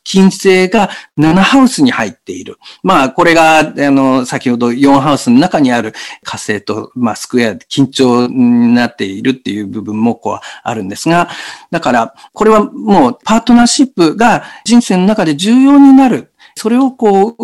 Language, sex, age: Japanese, male, 50-69